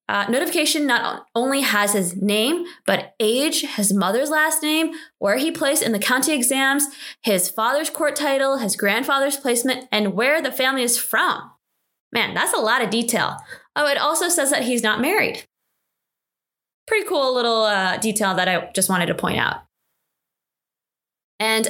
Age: 20-39